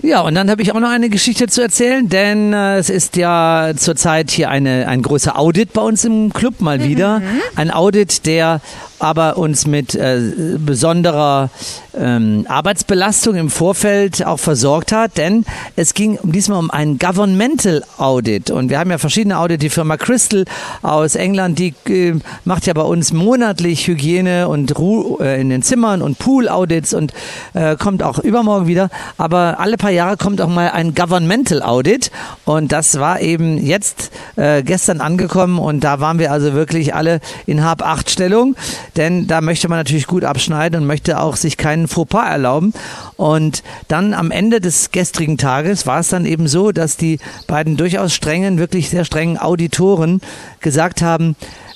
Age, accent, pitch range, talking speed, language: 50-69, German, 155-195 Hz, 170 wpm, German